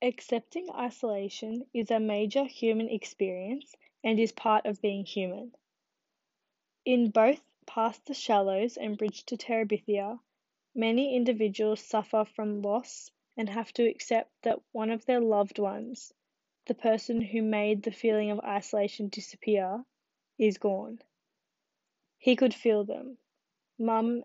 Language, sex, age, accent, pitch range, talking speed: English, female, 10-29, Australian, 210-235 Hz, 130 wpm